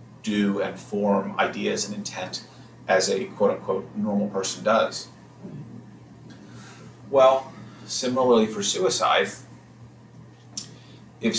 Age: 30-49